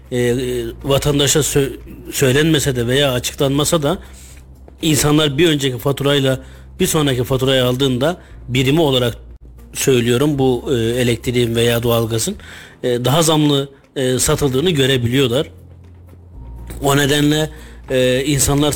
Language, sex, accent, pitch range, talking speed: Turkish, male, native, 120-145 Hz, 90 wpm